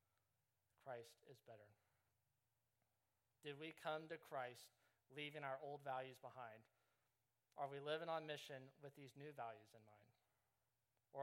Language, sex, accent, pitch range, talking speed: English, male, American, 115-135 Hz, 135 wpm